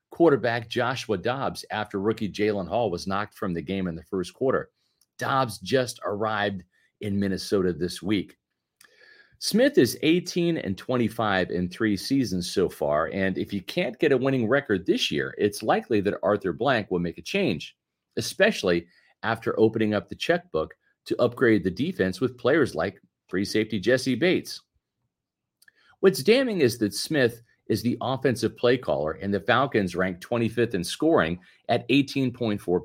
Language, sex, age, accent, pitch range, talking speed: English, male, 40-59, American, 100-140 Hz, 160 wpm